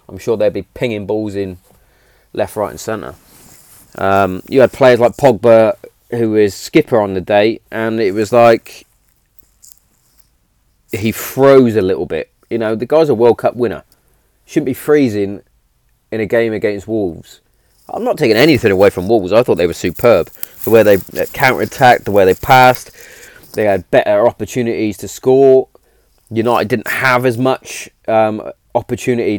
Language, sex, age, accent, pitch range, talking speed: English, male, 30-49, British, 100-120 Hz, 165 wpm